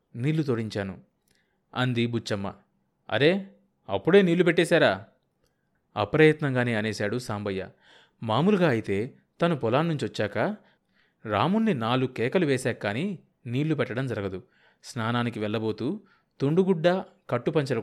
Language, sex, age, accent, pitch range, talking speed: Telugu, male, 30-49, native, 110-155 Hz, 90 wpm